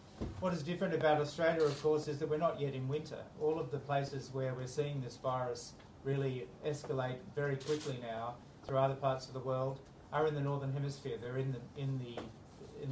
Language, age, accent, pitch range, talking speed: English, 40-59, Australian, 125-145 Hz, 210 wpm